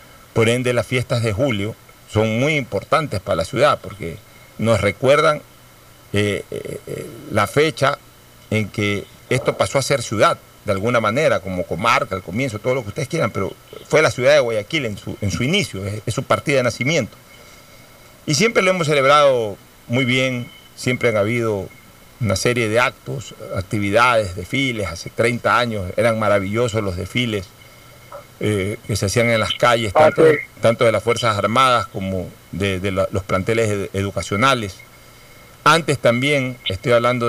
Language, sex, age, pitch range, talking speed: Spanish, male, 50-69, 105-135 Hz, 160 wpm